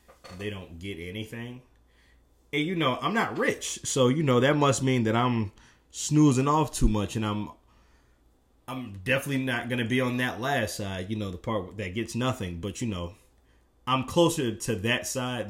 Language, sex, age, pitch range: English, male, 20-39, 85-120 Hz